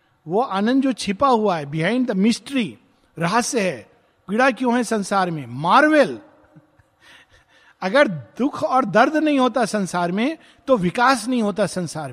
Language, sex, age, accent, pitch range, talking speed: Hindi, male, 50-69, native, 165-230 Hz, 145 wpm